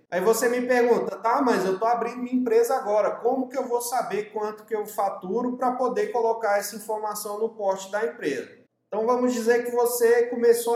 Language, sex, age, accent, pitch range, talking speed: Portuguese, male, 30-49, Brazilian, 205-245 Hz, 200 wpm